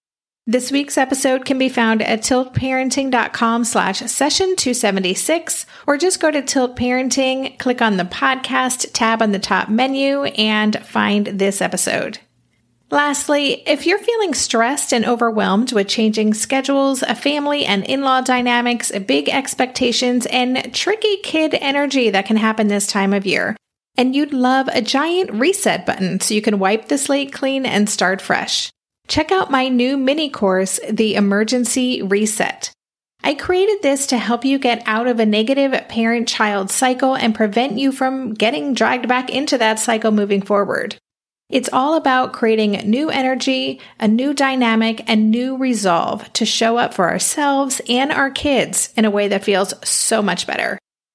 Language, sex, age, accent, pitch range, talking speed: English, female, 30-49, American, 220-270 Hz, 160 wpm